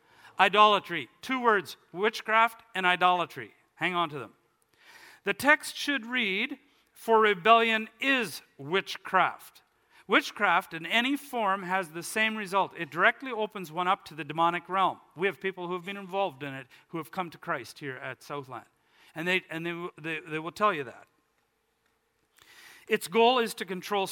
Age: 50-69